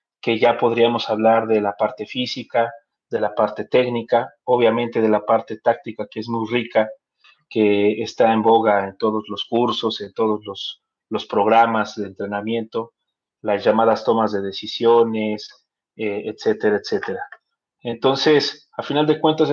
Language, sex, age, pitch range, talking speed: Spanish, male, 40-59, 110-130 Hz, 150 wpm